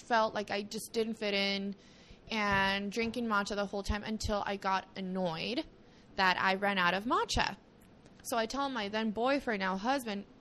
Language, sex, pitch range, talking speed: English, female, 205-270 Hz, 180 wpm